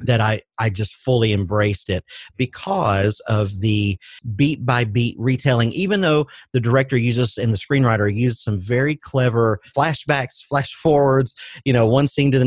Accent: American